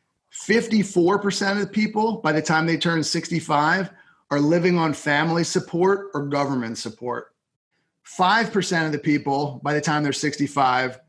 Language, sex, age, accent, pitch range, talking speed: English, male, 30-49, American, 140-175 Hz, 140 wpm